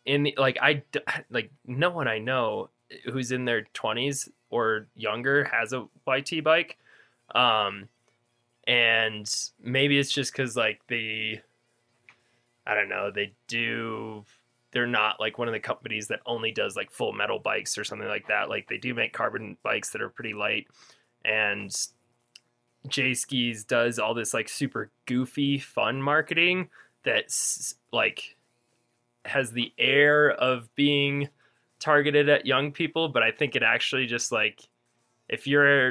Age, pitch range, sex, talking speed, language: 20-39, 120-140 Hz, male, 150 wpm, English